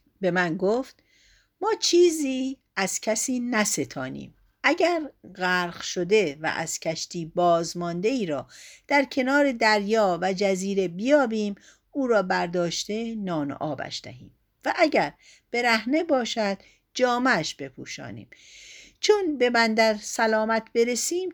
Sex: female